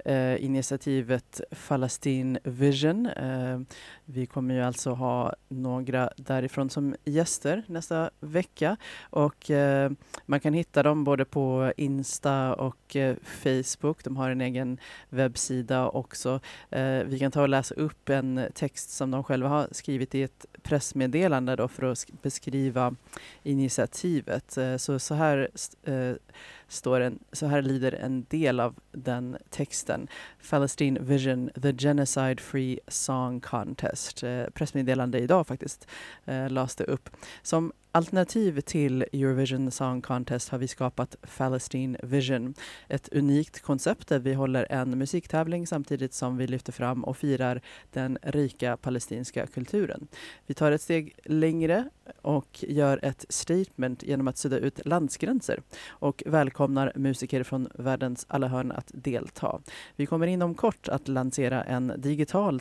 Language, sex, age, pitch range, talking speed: Swedish, female, 30-49, 130-145 Hz, 140 wpm